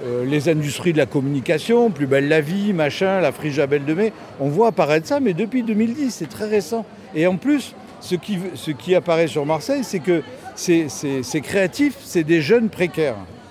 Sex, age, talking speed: male, 50-69, 210 wpm